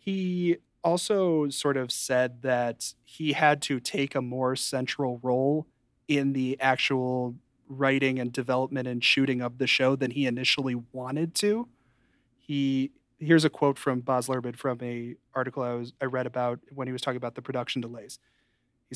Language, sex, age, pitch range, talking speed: English, male, 30-49, 125-140 Hz, 170 wpm